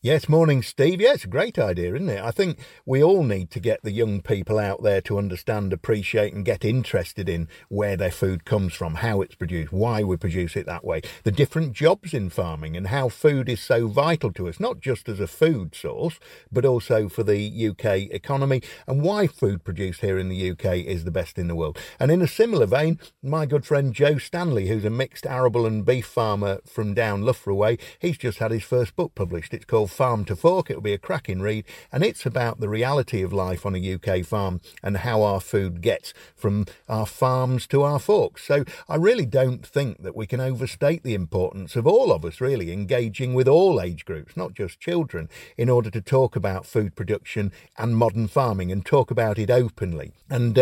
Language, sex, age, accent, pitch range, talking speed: English, male, 50-69, British, 100-130 Hz, 210 wpm